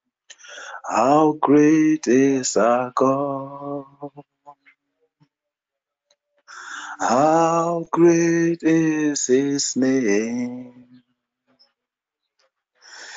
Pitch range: 130-170 Hz